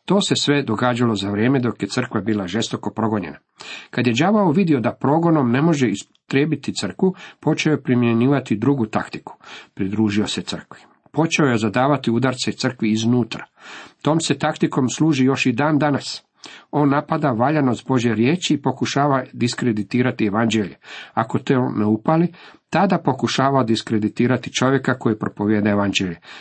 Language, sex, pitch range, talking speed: Croatian, male, 110-145 Hz, 145 wpm